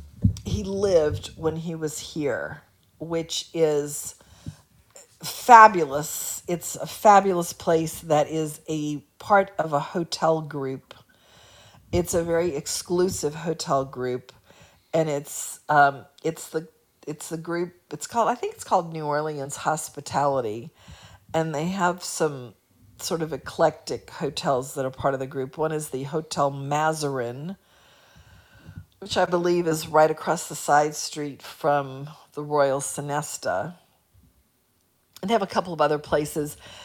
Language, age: English, 50-69